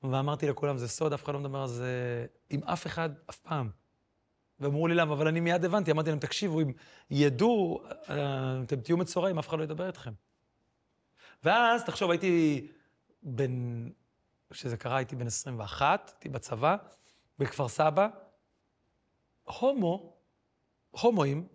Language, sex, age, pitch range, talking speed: Hebrew, male, 40-59, 140-180 Hz, 140 wpm